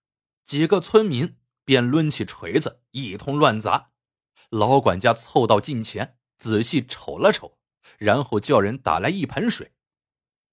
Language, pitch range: Chinese, 115-175 Hz